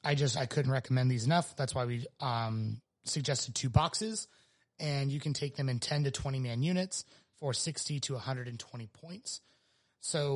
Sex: male